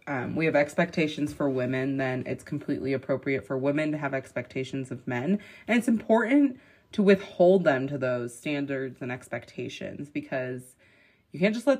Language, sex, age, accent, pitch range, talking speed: English, female, 20-39, American, 135-195 Hz, 170 wpm